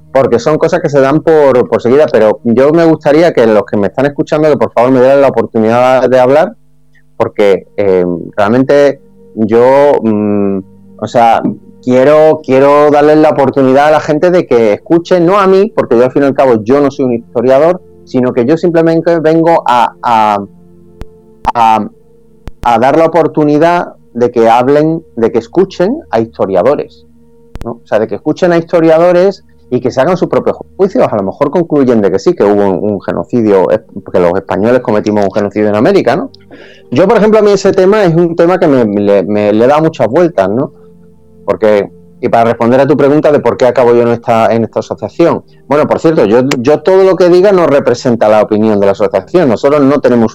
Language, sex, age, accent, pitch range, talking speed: Spanish, male, 30-49, Spanish, 105-155 Hz, 205 wpm